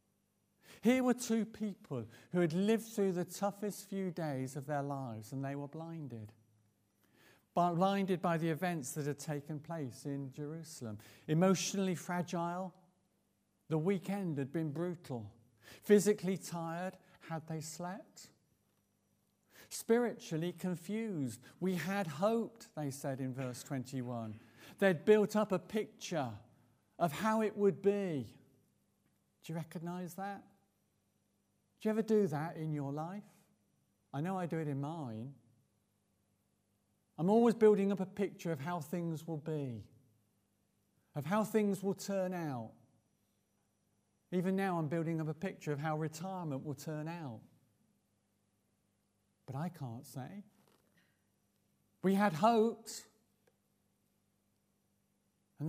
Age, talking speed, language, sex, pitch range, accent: 50-69, 125 wpm, English, male, 130-190 Hz, British